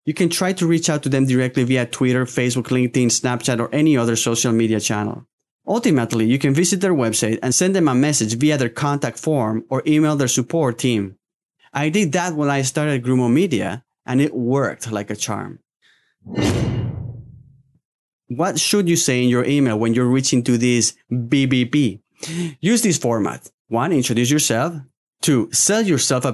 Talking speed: 175 wpm